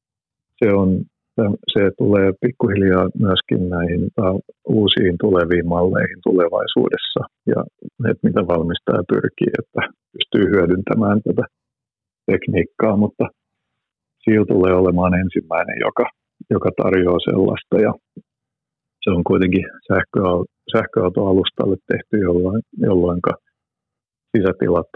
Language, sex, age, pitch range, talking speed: Finnish, male, 50-69, 90-105 Hz, 90 wpm